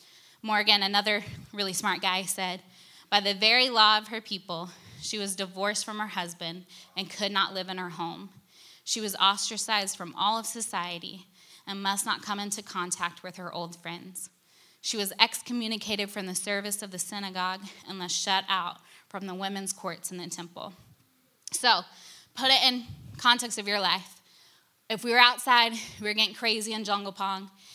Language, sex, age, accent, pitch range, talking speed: English, female, 20-39, American, 190-230 Hz, 175 wpm